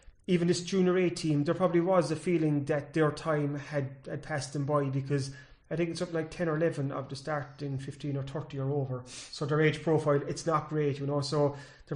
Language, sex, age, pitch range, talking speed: English, male, 30-49, 145-160 Hz, 235 wpm